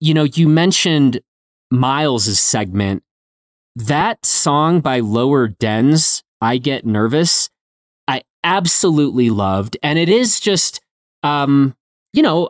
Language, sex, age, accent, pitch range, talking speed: English, male, 30-49, American, 115-160 Hz, 115 wpm